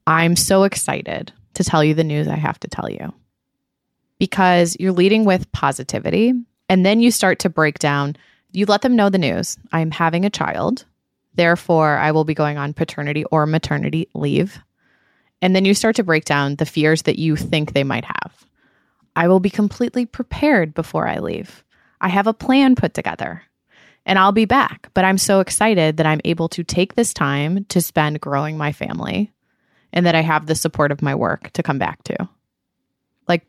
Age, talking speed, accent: 20-39, 195 wpm, American